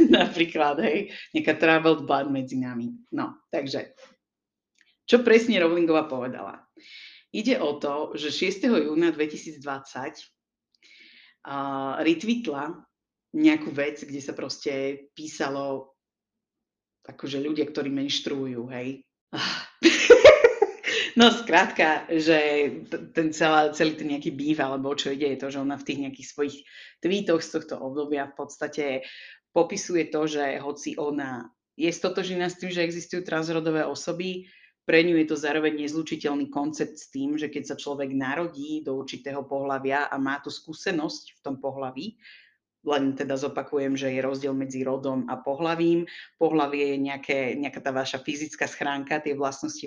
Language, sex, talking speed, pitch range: Slovak, female, 140 wpm, 140-165 Hz